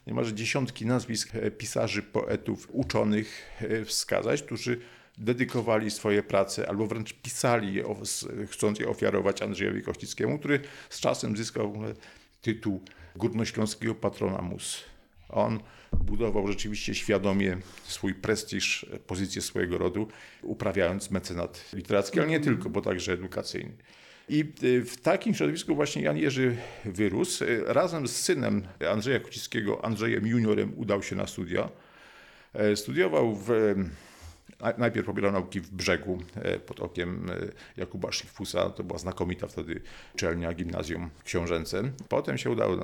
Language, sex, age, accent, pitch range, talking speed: Polish, male, 50-69, native, 95-115 Hz, 120 wpm